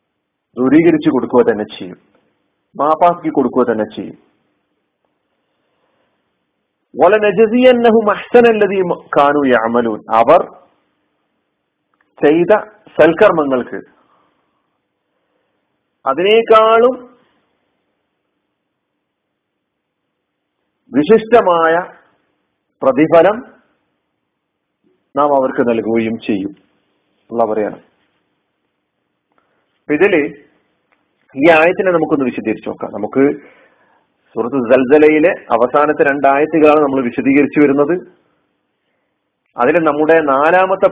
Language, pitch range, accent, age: Malayalam, 125-165 Hz, native, 40-59